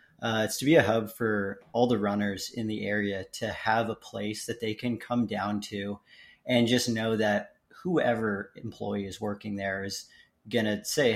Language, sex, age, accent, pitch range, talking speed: English, male, 30-49, American, 100-115 Hz, 195 wpm